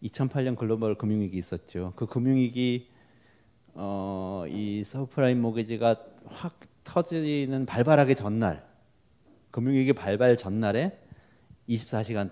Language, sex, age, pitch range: Korean, male, 40-59, 90-120 Hz